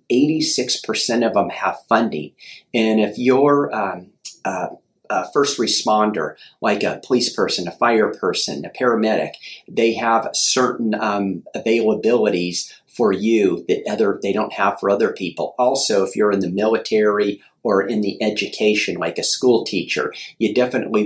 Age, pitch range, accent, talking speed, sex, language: 40-59, 105-120 Hz, American, 150 wpm, male, English